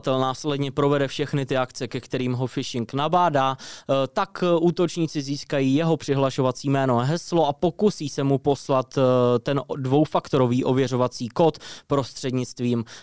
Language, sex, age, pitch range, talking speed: Czech, male, 20-39, 130-160 Hz, 130 wpm